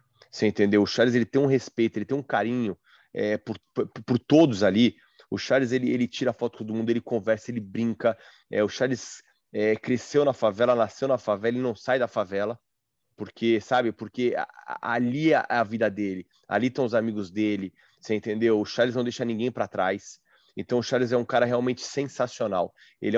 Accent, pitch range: Brazilian, 110-130 Hz